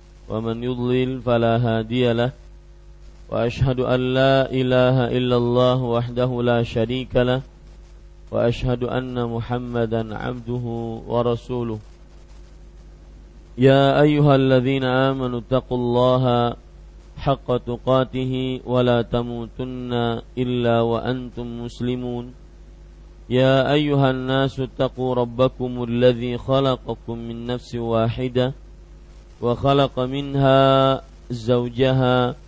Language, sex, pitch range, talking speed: Malay, male, 115-130 Hz, 85 wpm